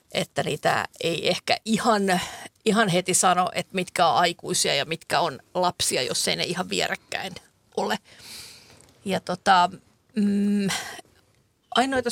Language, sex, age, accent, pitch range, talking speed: Finnish, female, 50-69, native, 180-220 Hz, 125 wpm